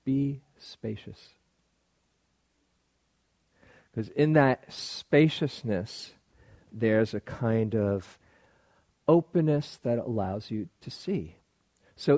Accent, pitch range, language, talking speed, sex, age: American, 105-130 Hz, English, 85 wpm, male, 50-69